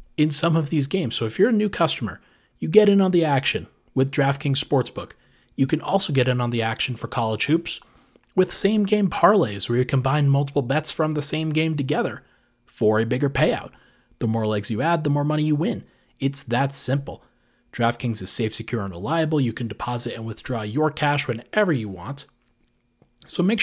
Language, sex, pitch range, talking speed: English, male, 120-155 Hz, 200 wpm